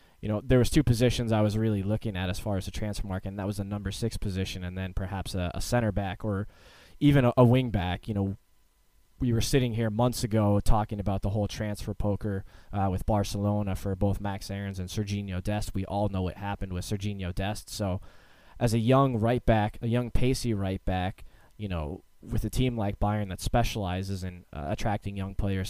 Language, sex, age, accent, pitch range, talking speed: English, male, 20-39, American, 95-115 Hz, 220 wpm